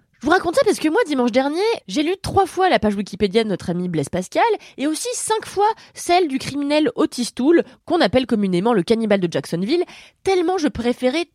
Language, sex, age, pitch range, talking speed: French, female, 20-39, 195-320 Hz, 210 wpm